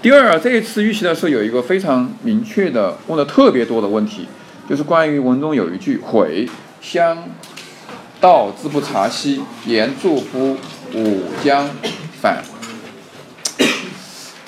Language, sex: Chinese, male